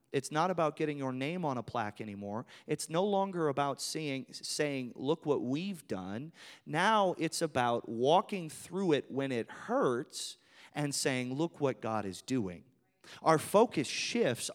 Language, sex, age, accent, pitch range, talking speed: English, male, 30-49, American, 130-190 Hz, 160 wpm